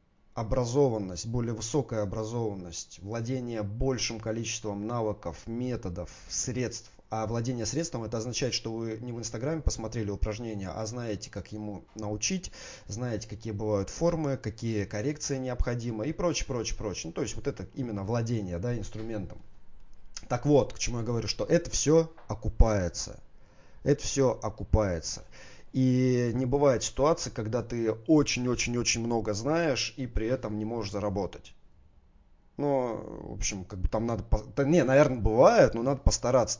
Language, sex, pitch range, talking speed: Russian, male, 105-125 Hz, 145 wpm